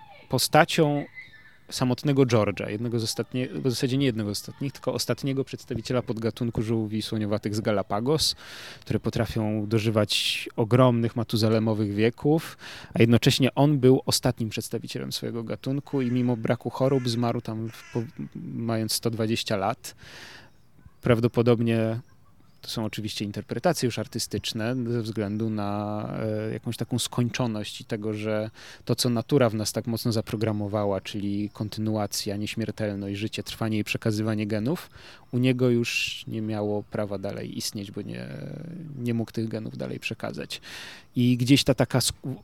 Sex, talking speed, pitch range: male, 135 wpm, 110-130 Hz